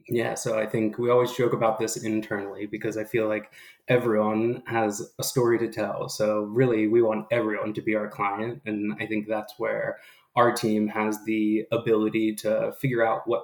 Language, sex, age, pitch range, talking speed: English, male, 20-39, 105-115 Hz, 190 wpm